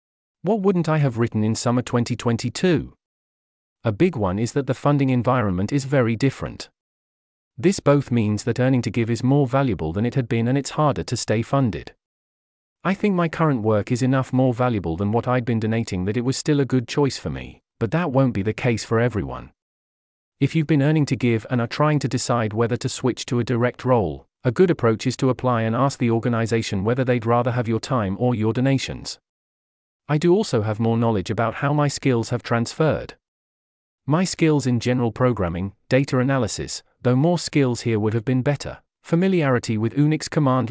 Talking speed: 205 wpm